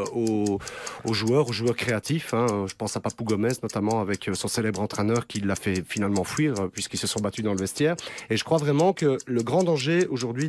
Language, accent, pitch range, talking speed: French, French, 110-145 Hz, 215 wpm